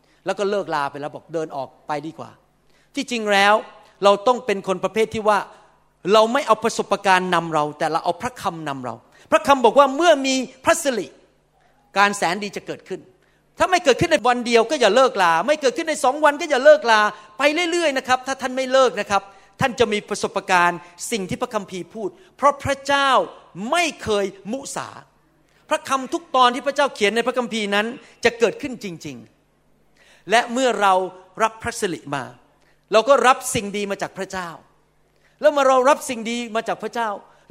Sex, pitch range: male, 185-260 Hz